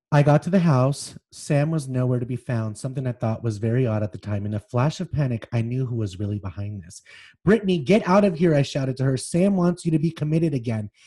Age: 30-49